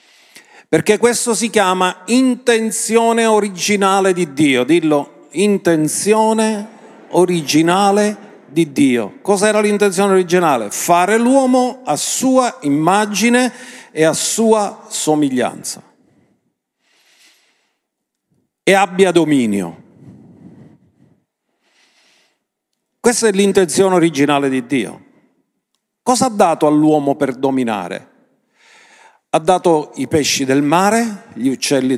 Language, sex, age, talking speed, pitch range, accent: Italian, male, 50-69, 90 wpm, 165-230 Hz, native